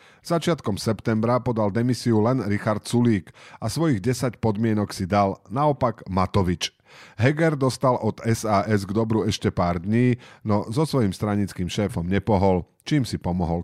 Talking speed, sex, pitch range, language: 145 wpm, male, 95-125 Hz, Slovak